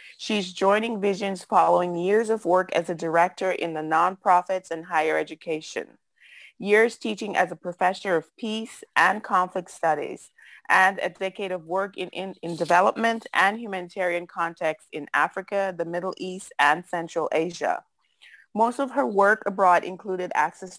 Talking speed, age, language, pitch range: 155 wpm, 30-49, English, 170-200 Hz